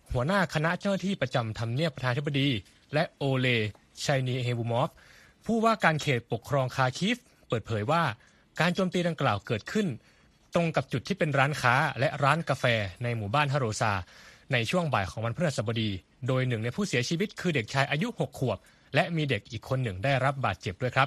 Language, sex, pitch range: Thai, male, 115-165 Hz